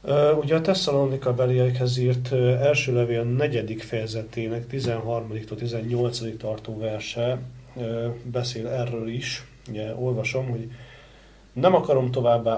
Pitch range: 115-135 Hz